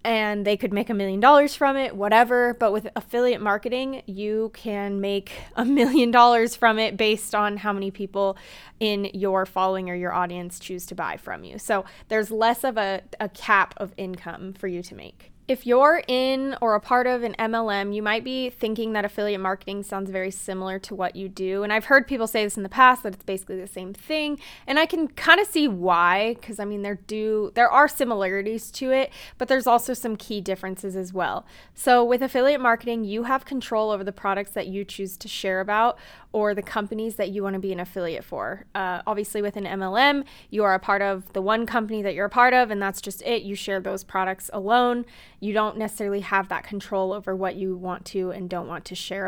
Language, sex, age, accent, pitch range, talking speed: English, female, 20-39, American, 195-240 Hz, 225 wpm